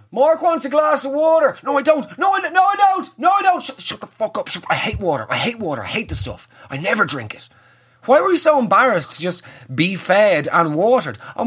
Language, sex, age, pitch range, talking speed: English, male, 30-49, 145-230 Hz, 260 wpm